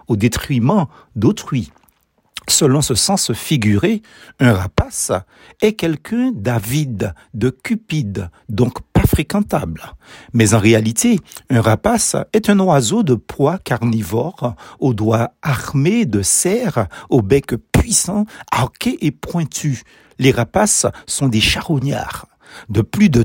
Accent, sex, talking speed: French, male, 120 wpm